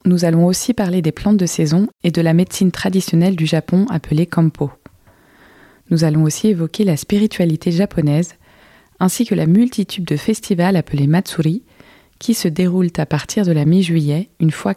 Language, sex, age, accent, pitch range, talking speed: French, female, 20-39, French, 155-195 Hz, 170 wpm